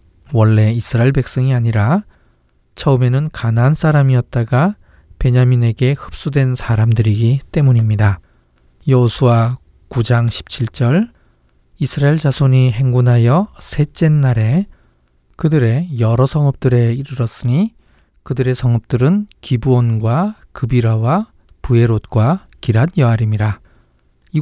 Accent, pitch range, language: native, 110-135 Hz, Korean